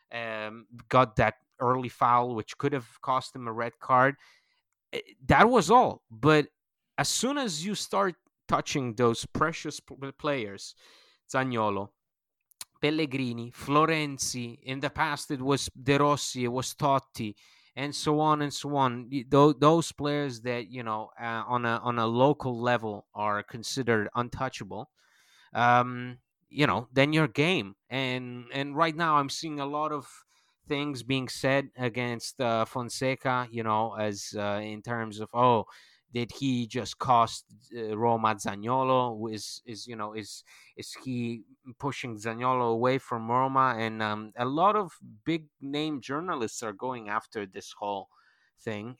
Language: English